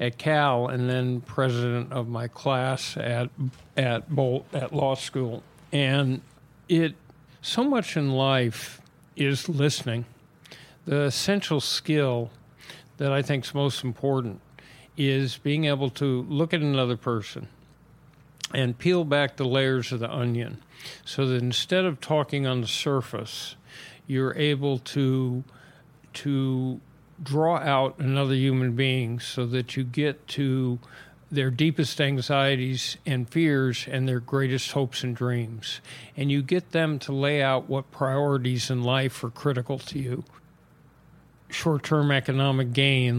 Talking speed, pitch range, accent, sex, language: 135 wpm, 125-145 Hz, American, male, English